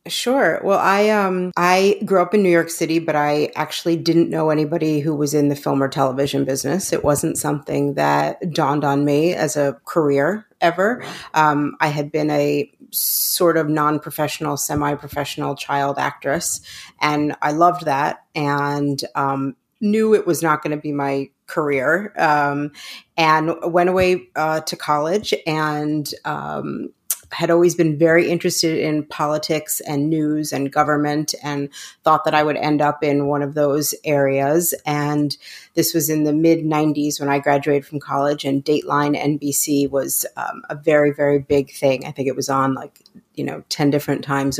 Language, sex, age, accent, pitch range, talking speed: English, female, 30-49, American, 145-165 Hz, 175 wpm